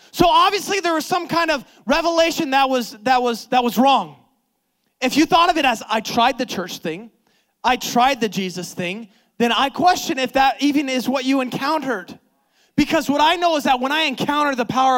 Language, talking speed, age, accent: English, 210 wpm, 20-39, American